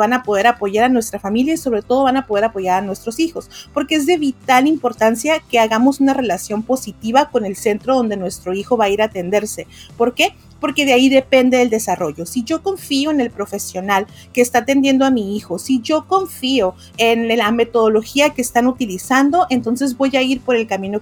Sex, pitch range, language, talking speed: female, 215-270 Hz, Spanish, 210 wpm